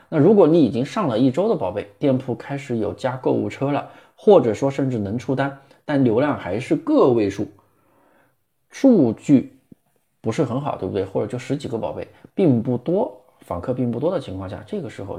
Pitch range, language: 105-140 Hz, Chinese